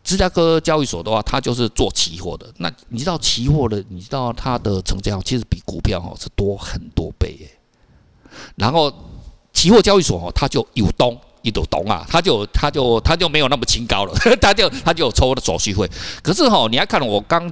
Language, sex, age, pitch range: Chinese, male, 50-69, 100-150 Hz